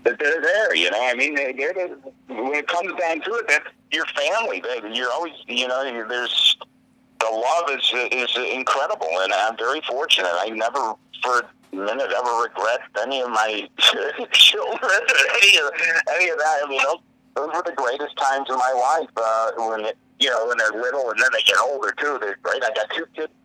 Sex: male